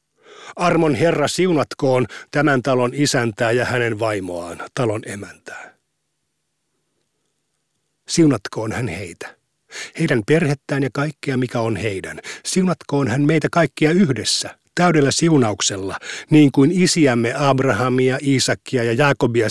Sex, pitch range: male, 120-150 Hz